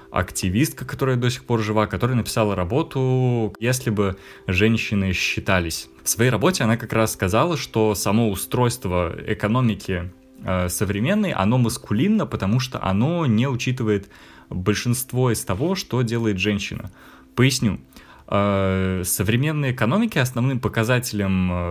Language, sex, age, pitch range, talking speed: Russian, male, 20-39, 95-130 Hz, 120 wpm